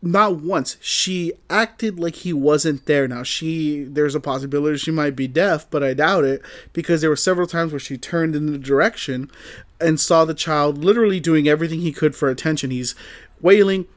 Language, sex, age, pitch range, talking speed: English, male, 30-49, 135-170 Hz, 195 wpm